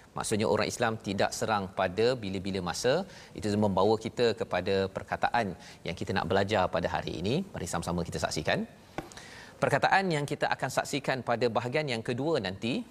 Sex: male